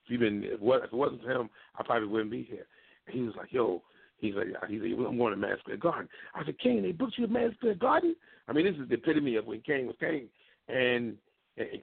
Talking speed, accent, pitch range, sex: 235 wpm, American, 130-190 Hz, male